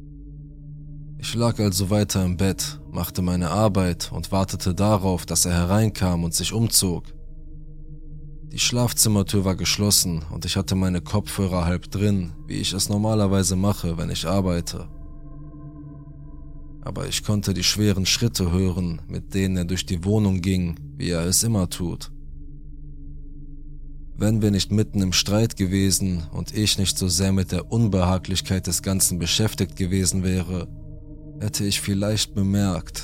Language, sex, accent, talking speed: German, male, German, 145 wpm